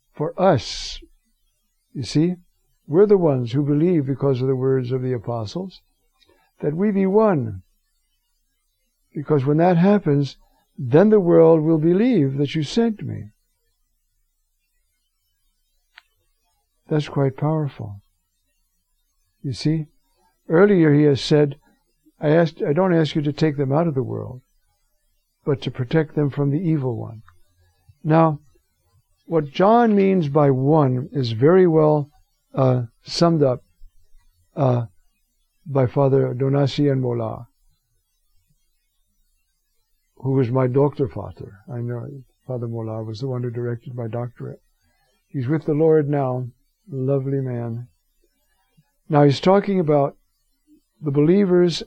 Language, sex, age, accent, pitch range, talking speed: English, male, 60-79, American, 105-155 Hz, 125 wpm